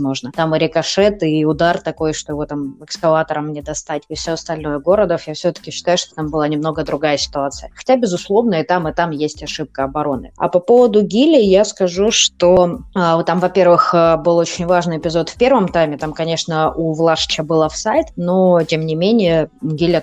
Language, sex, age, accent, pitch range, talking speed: Russian, female, 20-39, native, 150-180 Hz, 190 wpm